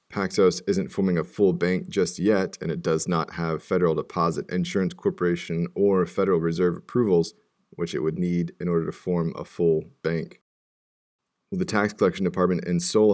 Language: English